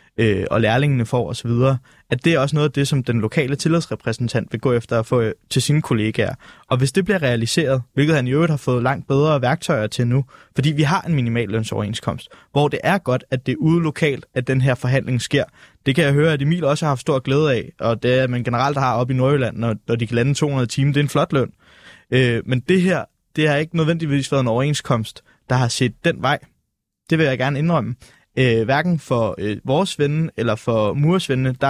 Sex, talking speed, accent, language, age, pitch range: male, 225 wpm, native, Danish, 20-39, 120-155 Hz